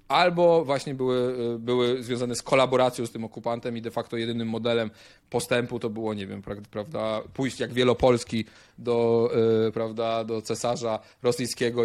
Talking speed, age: 145 wpm, 20-39